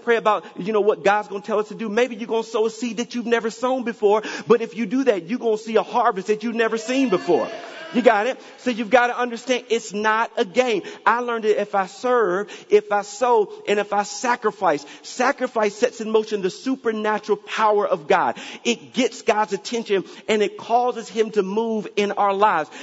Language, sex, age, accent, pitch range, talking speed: English, male, 40-59, American, 200-235 Hz, 230 wpm